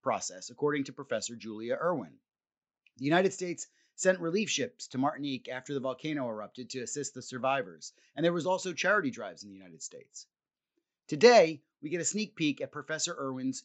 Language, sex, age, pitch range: English, male, 30-49, 130-165 Hz